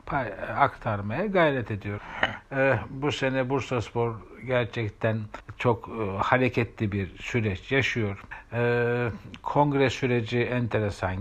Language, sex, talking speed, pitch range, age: Turkish, male, 85 wpm, 105-130 Hz, 60-79